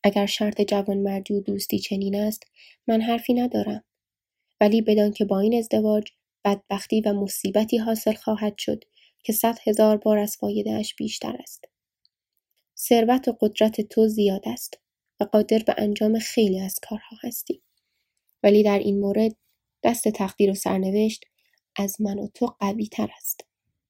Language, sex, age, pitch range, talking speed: Persian, female, 10-29, 200-230 Hz, 150 wpm